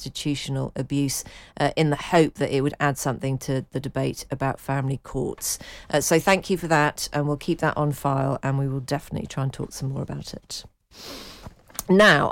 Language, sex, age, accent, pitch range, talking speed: English, female, 40-59, British, 140-165 Hz, 200 wpm